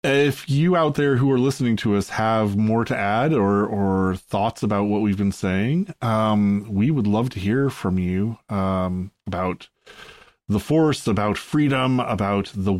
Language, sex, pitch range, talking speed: English, male, 100-130 Hz, 175 wpm